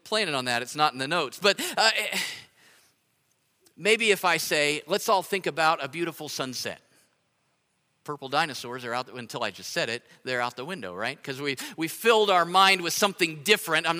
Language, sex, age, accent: English, male, 50-69, American